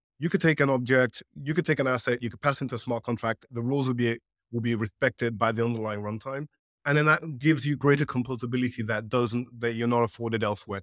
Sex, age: male, 30-49